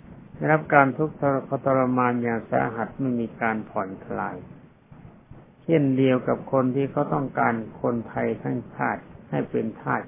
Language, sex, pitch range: Thai, male, 115-145 Hz